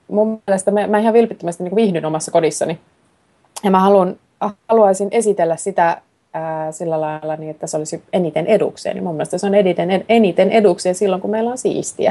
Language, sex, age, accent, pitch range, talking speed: Finnish, female, 30-49, native, 160-210 Hz, 185 wpm